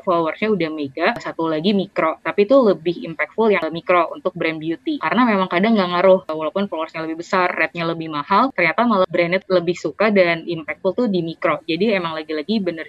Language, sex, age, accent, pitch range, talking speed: English, female, 20-39, Indonesian, 160-185 Hz, 190 wpm